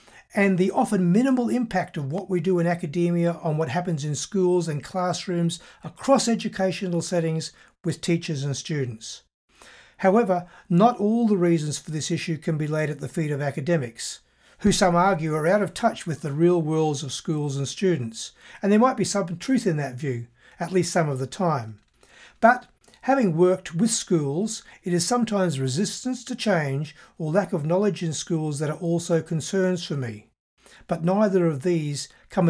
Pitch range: 150-190 Hz